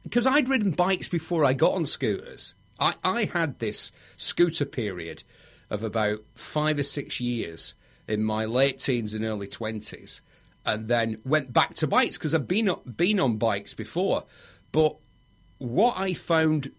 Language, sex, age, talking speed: English, male, 40-59, 160 wpm